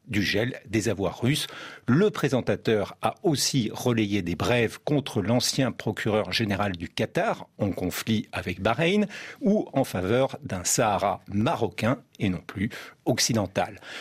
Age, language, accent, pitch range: 50-69, French, French, 105-145 Hz